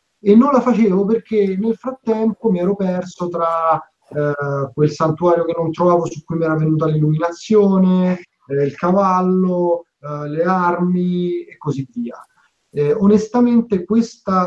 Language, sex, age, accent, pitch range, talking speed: Italian, male, 30-49, native, 145-185 Hz, 140 wpm